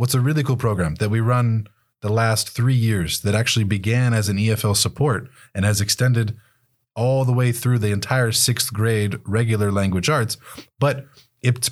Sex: male